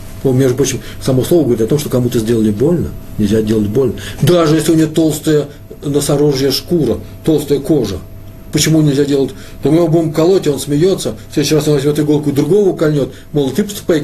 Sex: male